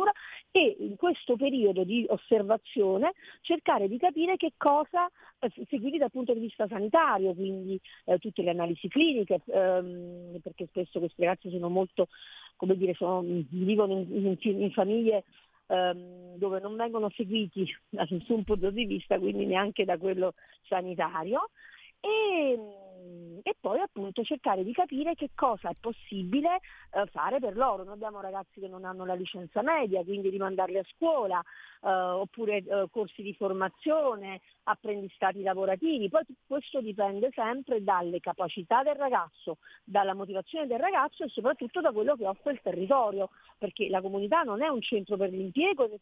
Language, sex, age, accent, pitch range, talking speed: Italian, female, 40-59, native, 185-255 Hz, 155 wpm